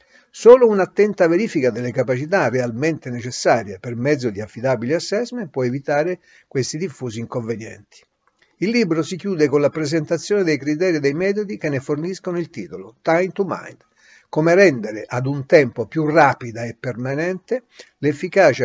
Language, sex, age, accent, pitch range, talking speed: Italian, male, 60-79, native, 125-180 Hz, 150 wpm